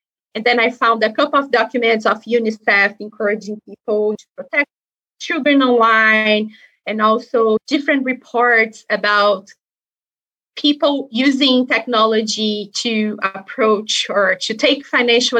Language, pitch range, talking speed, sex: English, 215-255 Hz, 115 wpm, female